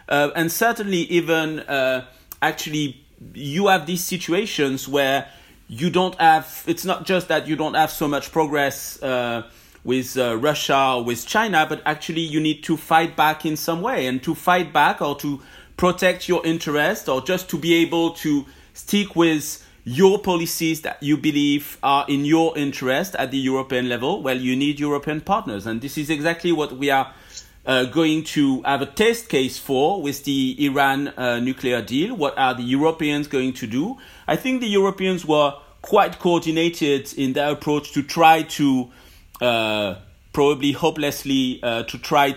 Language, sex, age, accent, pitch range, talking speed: English, male, 40-59, French, 130-165 Hz, 175 wpm